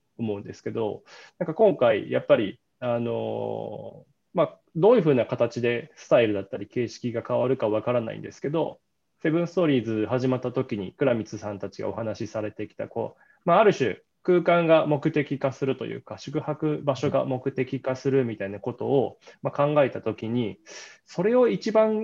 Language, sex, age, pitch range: Japanese, male, 20-39, 110-150 Hz